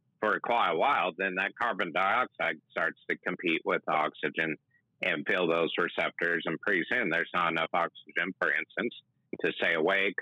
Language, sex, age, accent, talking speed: English, male, 50-69, American, 175 wpm